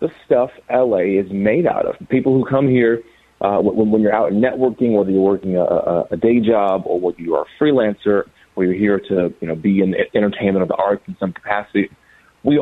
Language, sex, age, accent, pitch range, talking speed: English, male, 30-49, American, 100-125 Hz, 225 wpm